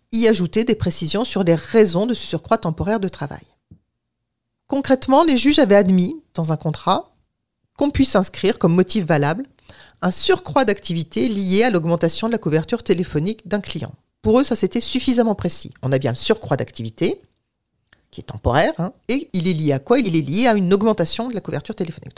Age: 40-59